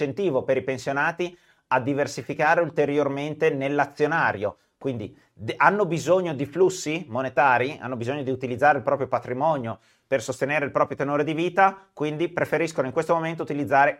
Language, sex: Italian, male